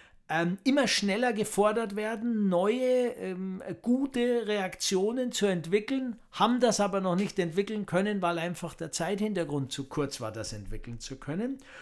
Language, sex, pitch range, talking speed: German, male, 155-210 Hz, 140 wpm